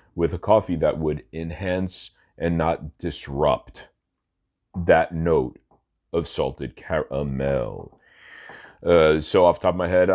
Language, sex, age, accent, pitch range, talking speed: English, male, 40-59, American, 85-120 Hz, 130 wpm